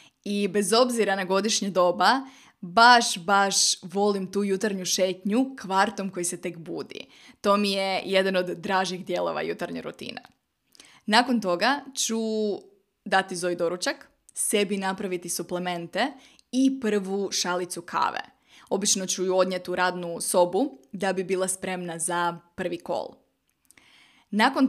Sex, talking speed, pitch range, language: female, 130 wpm, 185-220 Hz, Croatian